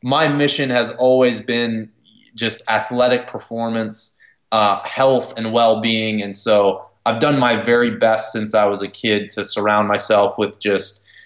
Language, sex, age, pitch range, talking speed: English, male, 20-39, 110-130 Hz, 155 wpm